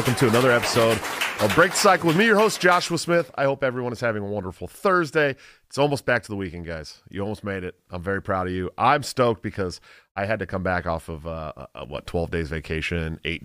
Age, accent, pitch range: 30-49, American, 90-120 Hz